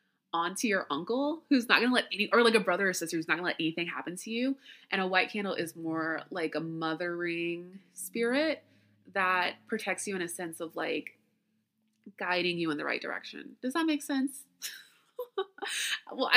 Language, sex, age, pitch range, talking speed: English, female, 20-39, 165-245 Hz, 190 wpm